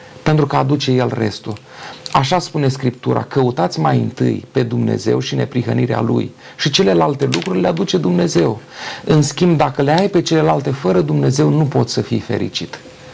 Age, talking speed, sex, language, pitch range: 40-59, 165 wpm, male, Romanian, 120-155 Hz